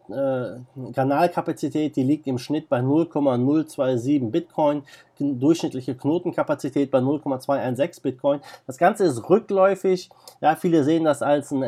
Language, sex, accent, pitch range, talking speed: German, male, German, 130-155 Hz, 125 wpm